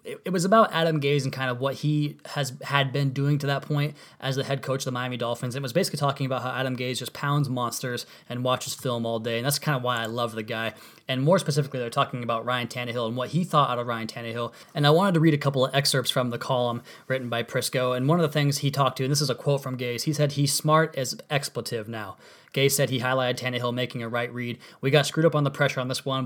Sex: male